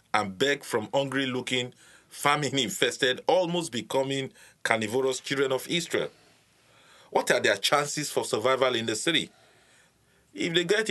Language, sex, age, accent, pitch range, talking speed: English, male, 50-69, Nigerian, 125-175 Hz, 120 wpm